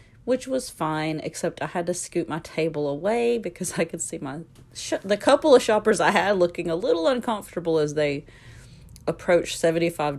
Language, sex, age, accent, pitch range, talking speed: English, female, 40-59, American, 135-180 Hz, 185 wpm